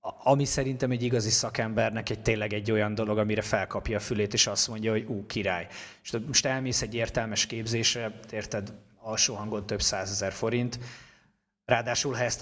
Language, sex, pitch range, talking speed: Hungarian, male, 105-120 Hz, 165 wpm